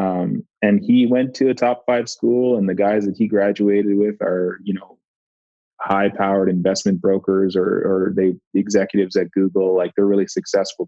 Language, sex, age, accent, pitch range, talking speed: English, male, 20-39, American, 90-100 Hz, 180 wpm